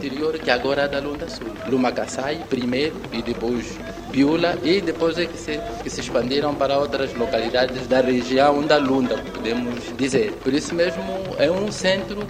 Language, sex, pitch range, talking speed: Portuguese, male, 125-155 Hz, 165 wpm